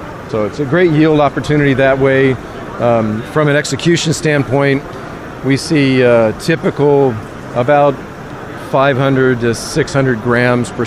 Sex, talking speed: male, 125 wpm